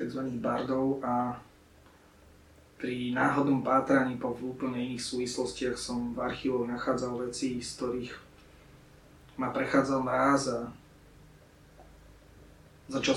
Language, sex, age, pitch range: Slovak, male, 30-49, 120-130 Hz